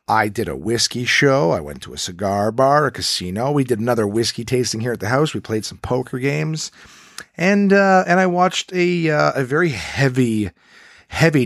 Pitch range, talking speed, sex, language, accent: 100-145 Hz, 200 wpm, male, English, American